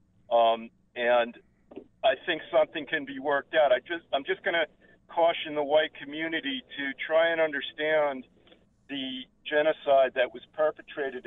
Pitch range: 115-140 Hz